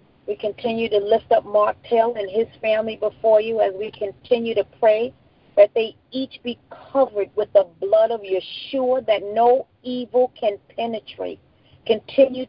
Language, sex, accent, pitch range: English, female, American, 180-220 Hz